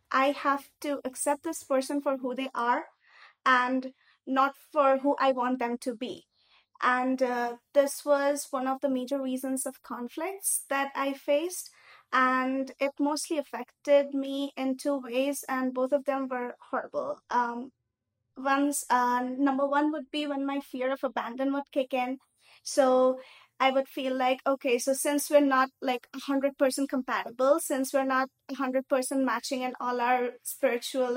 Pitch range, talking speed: 255-280 Hz, 160 wpm